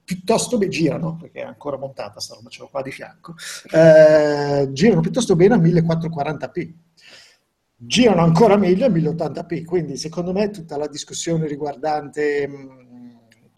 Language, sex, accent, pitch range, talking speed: Italian, male, native, 140-170 Hz, 145 wpm